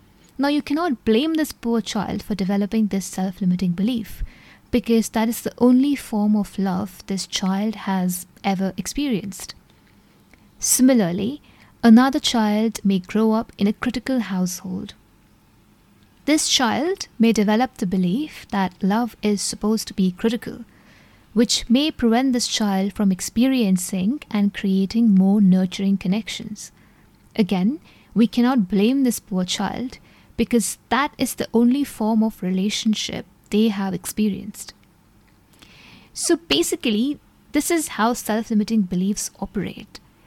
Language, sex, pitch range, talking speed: English, female, 195-240 Hz, 130 wpm